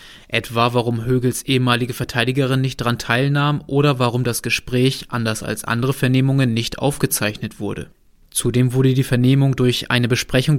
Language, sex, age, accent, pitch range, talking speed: German, male, 20-39, German, 115-135 Hz, 145 wpm